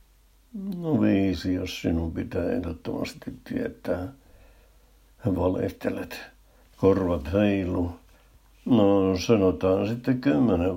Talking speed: 80 wpm